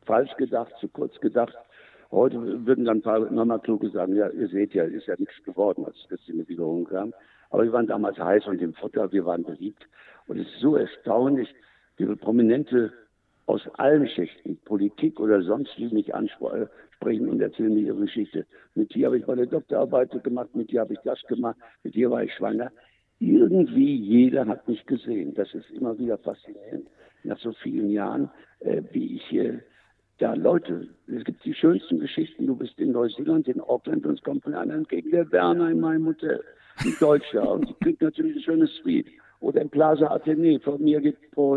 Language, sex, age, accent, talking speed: German, male, 60-79, German, 200 wpm